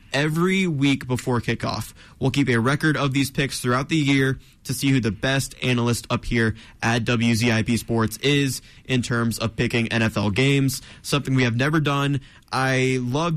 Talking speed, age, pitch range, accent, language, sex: 175 wpm, 20-39, 115-140 Hz, American, English, male